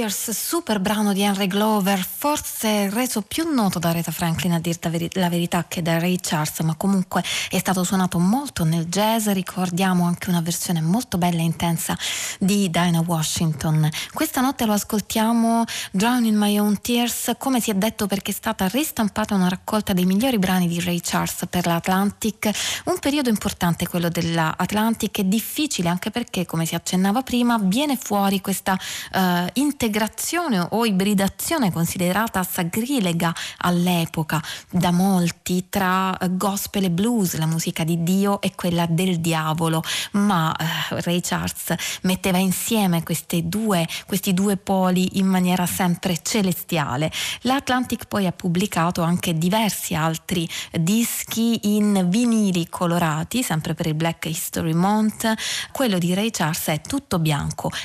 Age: 20-39